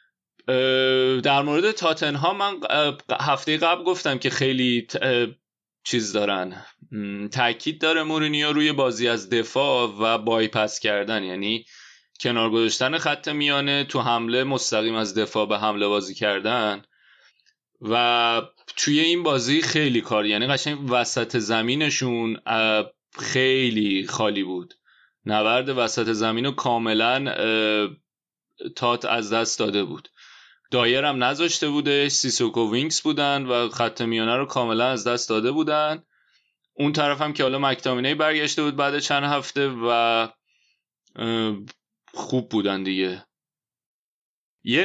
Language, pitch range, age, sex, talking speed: Persian, 115-150 Hz, 30-49, male, 115 wpm